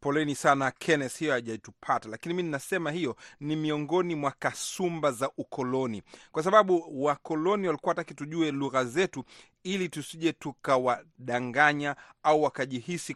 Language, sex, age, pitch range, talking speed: Swahili, male, 40-59, 130-165 Hz, 125 wpm